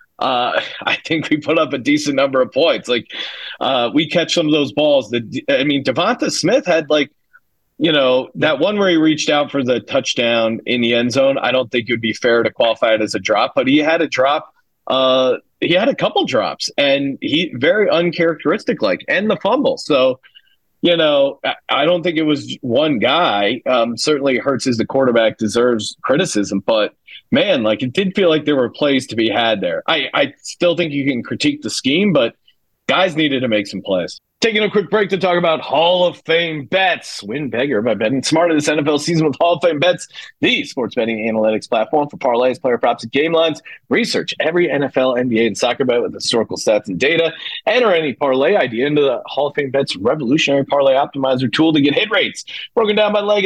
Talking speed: 215 wpm